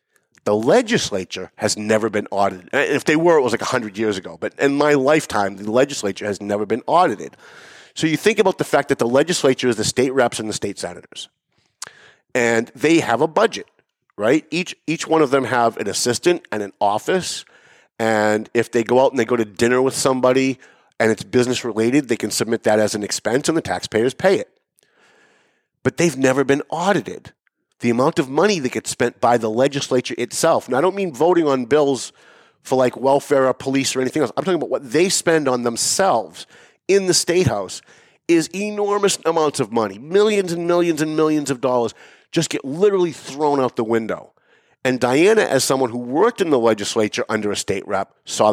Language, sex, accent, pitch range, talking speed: English, male, American, 110-150 Hz, 200 wpm